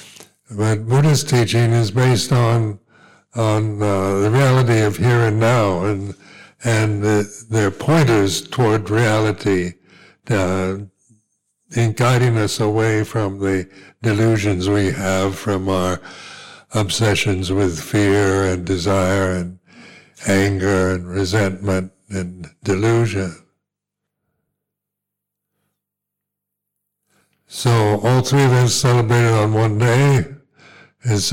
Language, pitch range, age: English, 95-115 Hz, 60-79